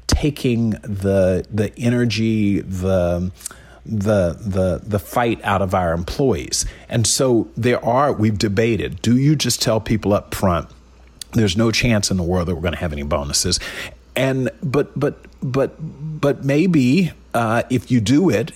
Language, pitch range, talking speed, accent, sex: English, 95-120 Hz, 160 wpm, American, male